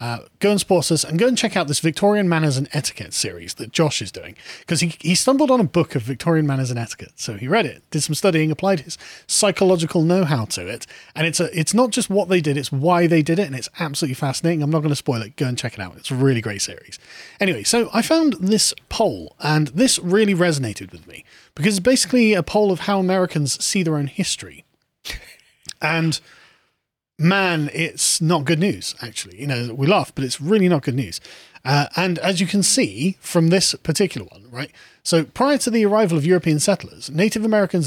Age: 30-49